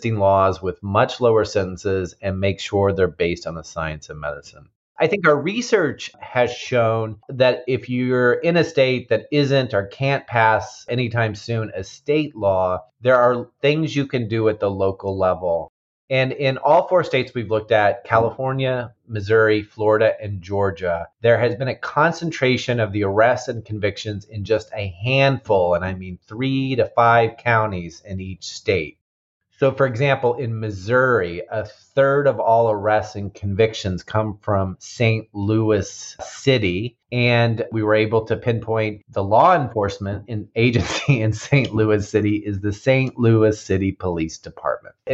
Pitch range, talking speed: 100-125 Hz, 160 wpm